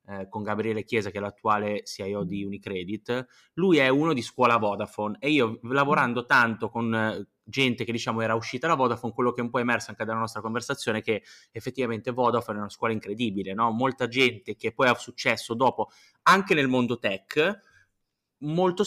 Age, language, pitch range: 20-39, Italian, 105-130 Hz